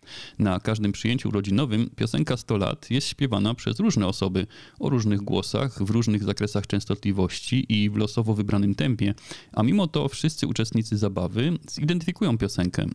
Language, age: Polish, 30-49